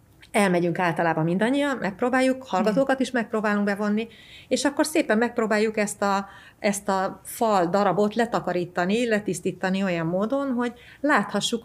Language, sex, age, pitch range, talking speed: Hungarian, female, 30-49, 185-235 Hz, 125 wpm